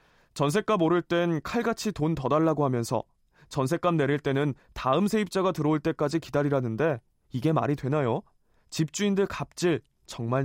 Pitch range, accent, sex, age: 140-190 Hz, native, male, 20-39